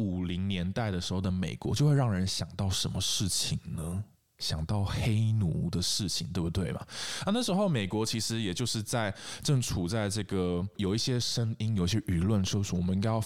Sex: male